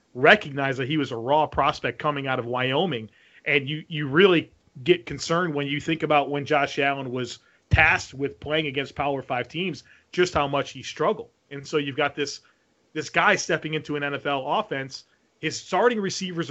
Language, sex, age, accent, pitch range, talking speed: English, male, 30-49, American, 135-160 Hz, 190 wpm